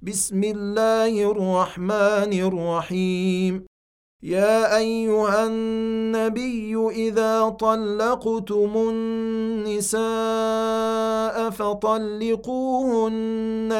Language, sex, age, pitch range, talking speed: Arabic, male, 40-59, 200-225 Hz, 50 wpm